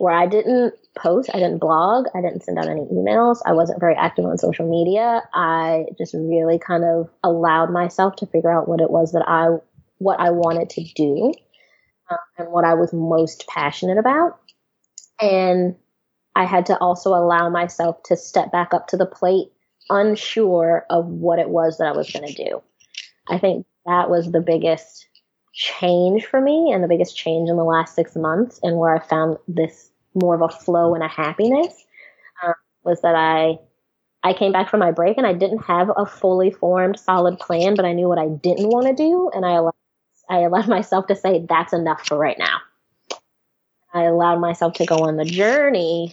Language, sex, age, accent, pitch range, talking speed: English, female, 20-39, American, 165-190 Hz, 195 wpm